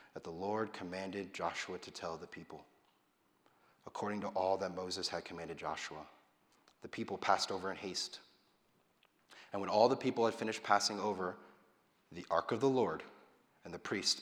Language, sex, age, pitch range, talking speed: English, male, 30-49, 90-105 Hz, 170 wpm